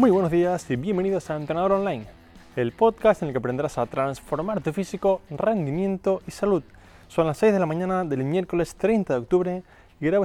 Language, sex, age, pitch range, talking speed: Spanish, male, 20-39, 135-170 Hz, 200 wpm